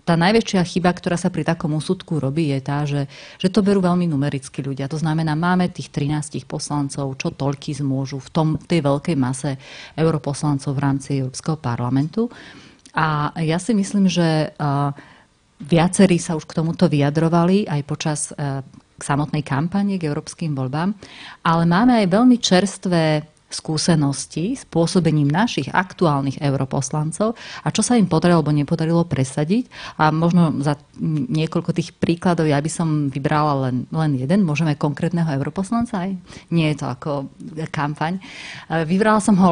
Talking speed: 155 wpm